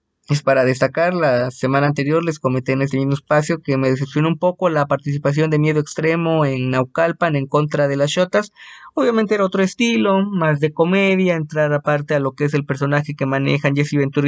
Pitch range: 135-165 Hz